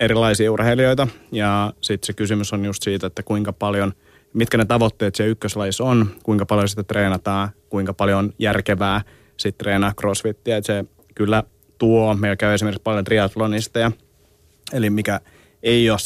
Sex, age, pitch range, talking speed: male, 30-49, 90-105 Hz, 155 wpm